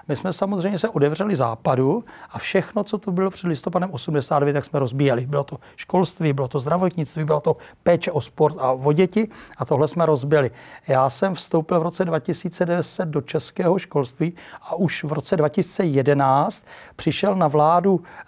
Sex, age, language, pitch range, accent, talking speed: male, 40-59, Czech, 140-170 Hz, native, 170 wpm